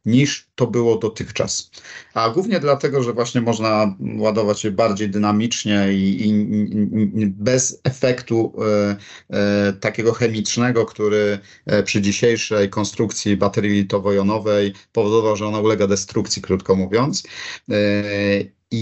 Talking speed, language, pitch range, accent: 105 wpm, Polish, 100-110 Hz, native